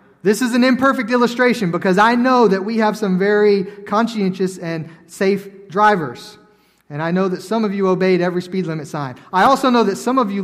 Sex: male